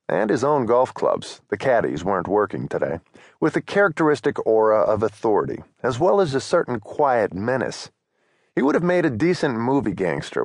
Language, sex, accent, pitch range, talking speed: English, male, American, 110-155 Hz, 165 wpm